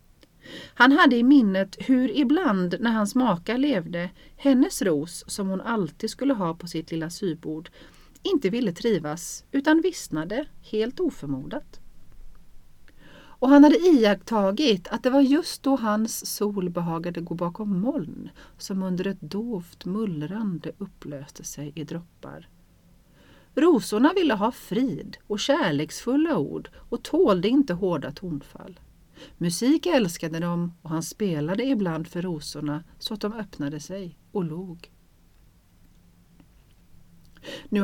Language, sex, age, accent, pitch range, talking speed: Swedish, female, 40-59, native, 170-235 Hz, 125 wpm